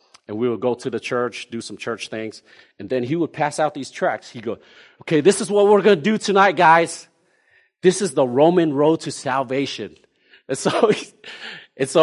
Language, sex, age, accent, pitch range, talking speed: English, male, 40-59, American, 110-165 Hz, 200 wpm